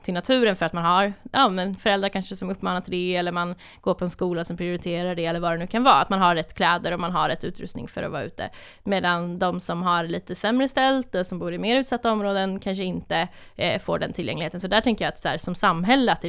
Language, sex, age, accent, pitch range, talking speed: Swedish, female, 20-39, native, 180-215 Hz, 275 wpm